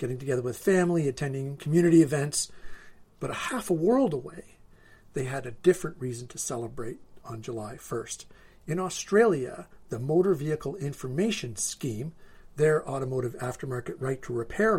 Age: 50-69